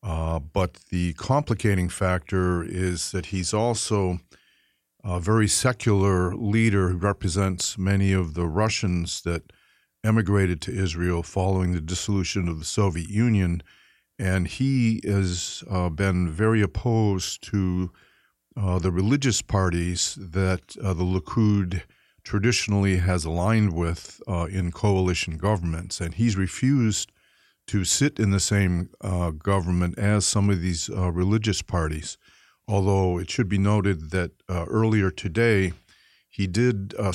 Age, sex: 50-69, male